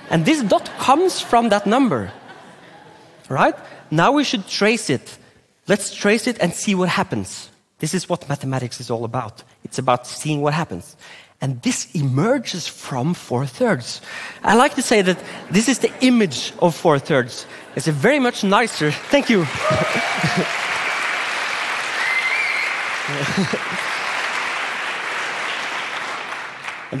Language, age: Korean, 30-49